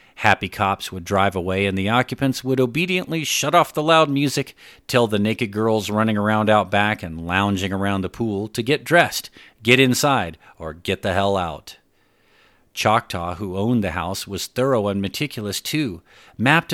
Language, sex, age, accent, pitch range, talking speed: English, male, 40-59, American, 95-130 Hz, 175 wpm